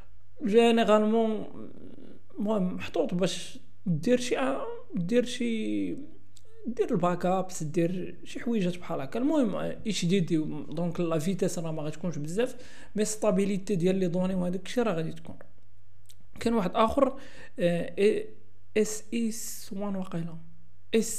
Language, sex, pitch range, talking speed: Arabic, male, 150-210 Hz, 120 wpm